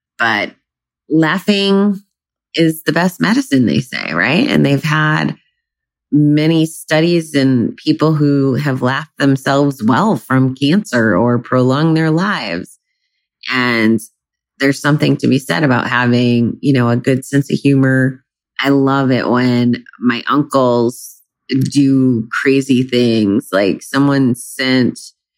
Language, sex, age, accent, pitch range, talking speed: English, female, 30-49, American, 120-140 Hz, 130 wpm